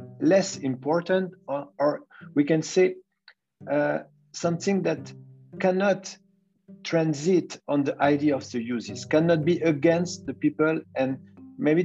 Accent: French